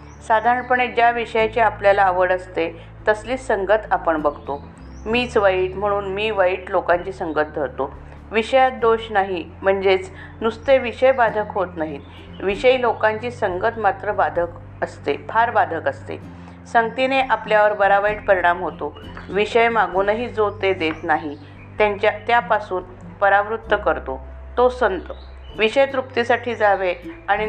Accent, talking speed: native, 120 wpm